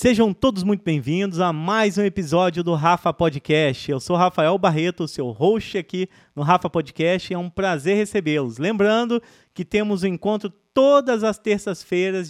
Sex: male